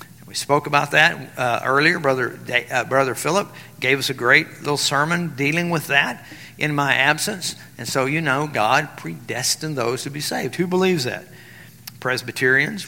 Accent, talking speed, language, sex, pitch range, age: American, 170 wpm, English, male, 130-155 Hz, 50-69